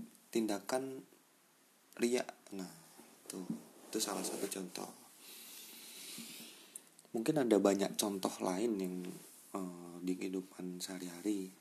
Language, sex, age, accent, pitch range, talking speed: Indonesian, male, 30-49, native, 95-110 Hz, 95 wpm